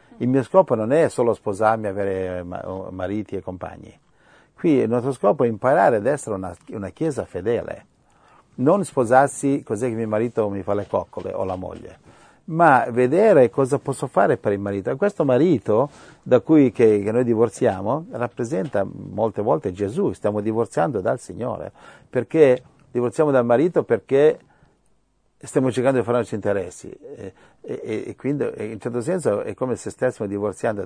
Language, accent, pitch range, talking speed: Italian, native, 105-140 Hz, 170 wpm